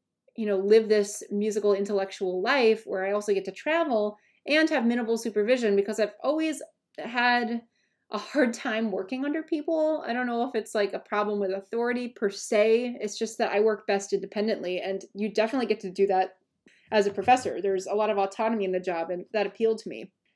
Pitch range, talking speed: 200-260 Hz, 205 wpm